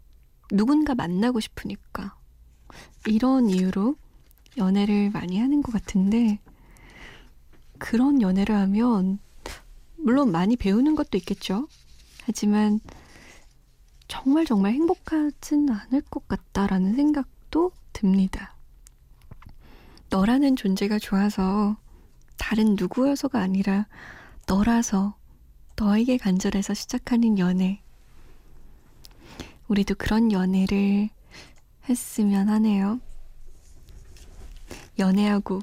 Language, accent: Korean, native